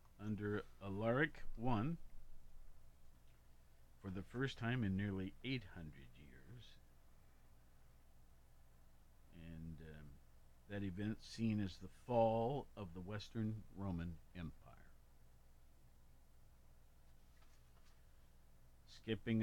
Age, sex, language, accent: 50-69, male, English, American